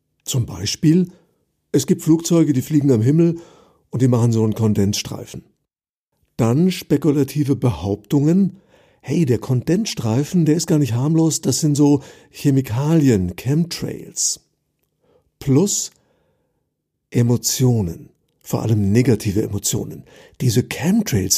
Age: 50-69